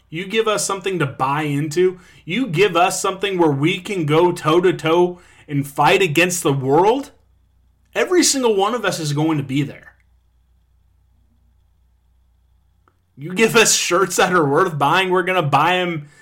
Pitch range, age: 125-180 Hz, 30-49